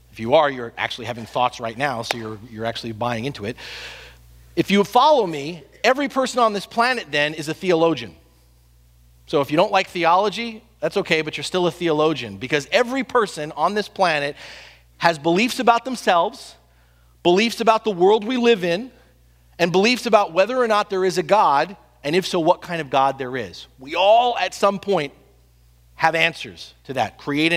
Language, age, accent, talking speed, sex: English, 40-59, American, 190 wpm, male